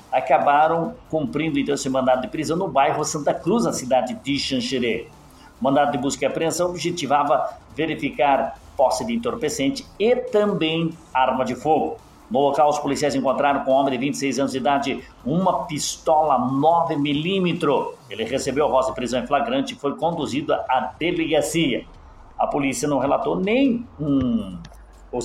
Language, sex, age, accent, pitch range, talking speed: Portuguese, male, 60-79, Brazilian, 135-185 Hz, 160 wpm